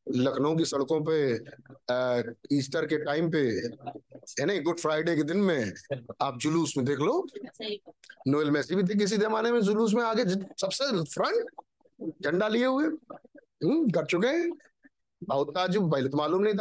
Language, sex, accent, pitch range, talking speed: Hindi, male, native, 145-215 Hz, 100 wpm